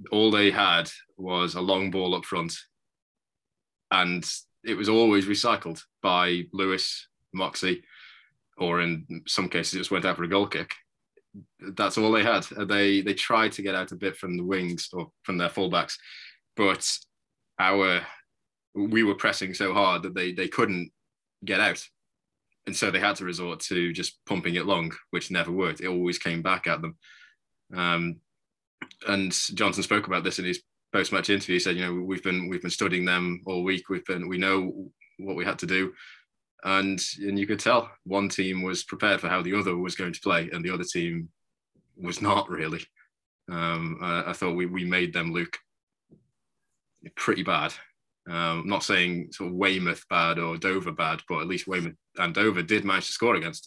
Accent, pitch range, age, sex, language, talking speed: British, 90-95 Hz, 20-39, male, English, 190 wpm